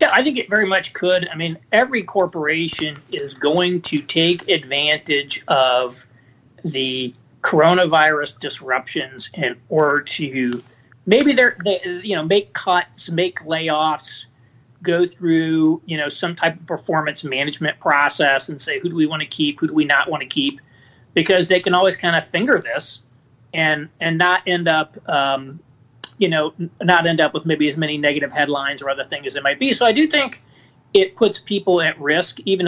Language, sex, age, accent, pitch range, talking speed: English, male, 40-59, American, 145-190 Hz, 185 wpm